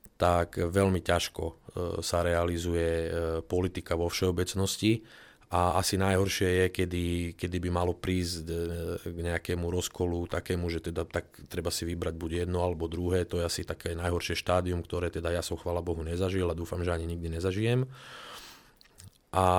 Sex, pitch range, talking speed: male, 85-95 Hz, 155 wpm